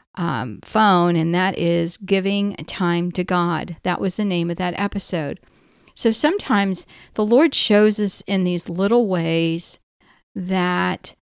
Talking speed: 145 wpm